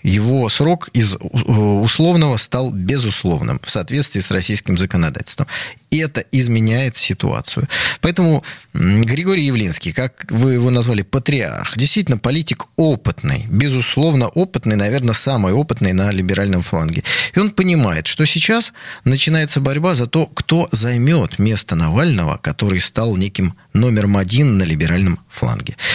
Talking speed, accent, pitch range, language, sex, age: 125 wpm, native, 105-155 Hz, Russian, male, 20-39